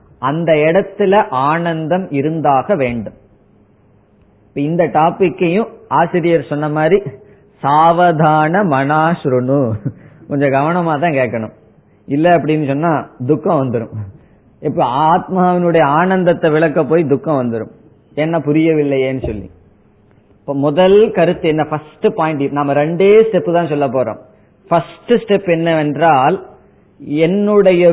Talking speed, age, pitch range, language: 65 wpm, 20-39, 145-180 Hz, Tamil